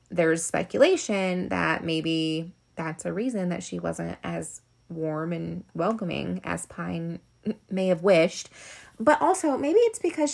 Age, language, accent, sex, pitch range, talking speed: 20-39, English, American, female, 165-200 Hz, 140 wpm